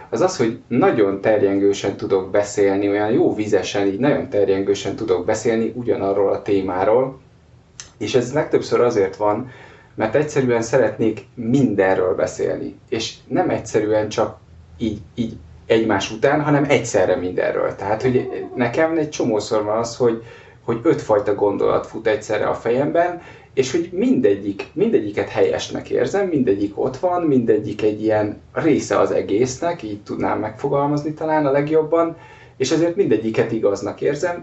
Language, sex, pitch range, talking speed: Hungarian, male, 110-155 Hz, 140 wpm